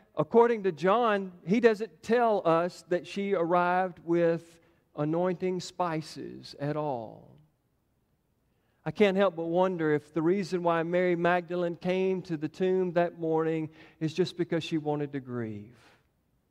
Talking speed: 140 wpm